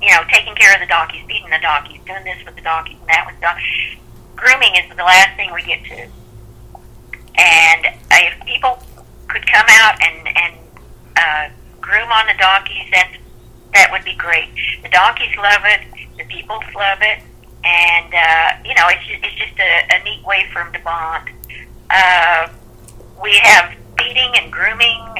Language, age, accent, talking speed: English, 50-69, American, 180 wpm